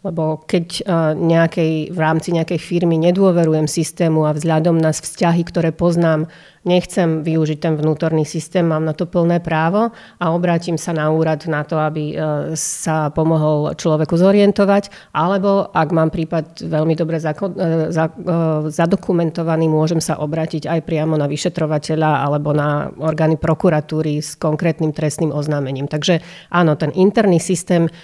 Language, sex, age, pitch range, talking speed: Slovak, female, 30-49, 155-175 Hz, 145 wpm